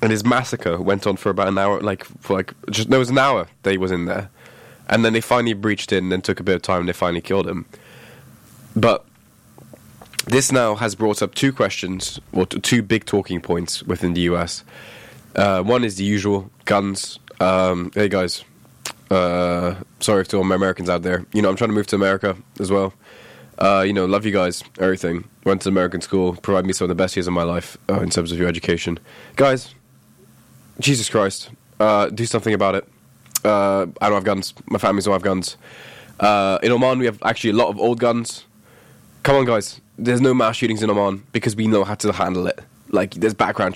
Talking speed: 215 wpm